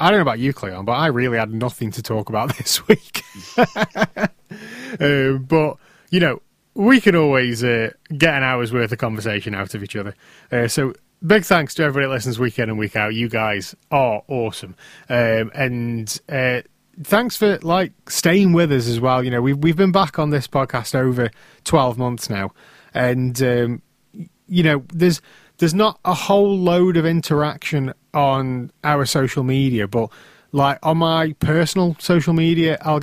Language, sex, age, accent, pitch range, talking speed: English, male, 30-49, British, 120-155 Hz, 180 wpm